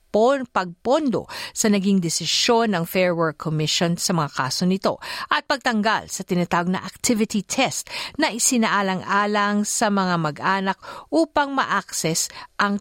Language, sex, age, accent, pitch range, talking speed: Filipino, female, 50-69, native, 180-235 Hz, 130 wpm